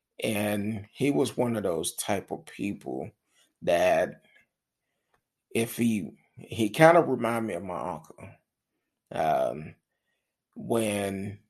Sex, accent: male, American